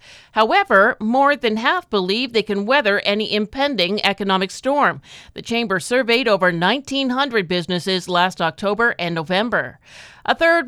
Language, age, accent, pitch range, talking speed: English, 50-69, American, 190-245 Hz, 135 wpm